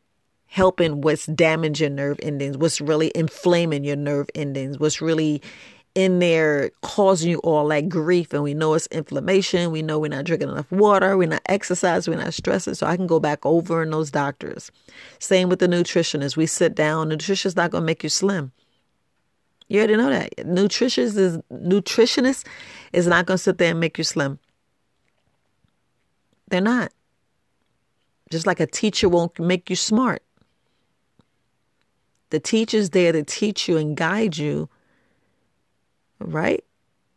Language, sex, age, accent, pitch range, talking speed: English, female, 40-59, American, 155-190 Hz, 160 wpm